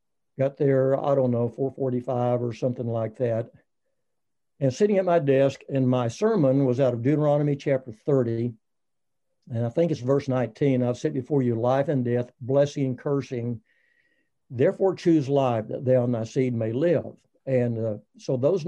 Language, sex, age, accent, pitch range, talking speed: English, male, 60-79, American, 120-135 Hz, 175 wpm